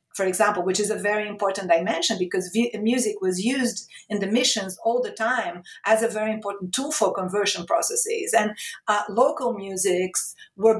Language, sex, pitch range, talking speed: English, female, 190-235 Hz, 170 wpm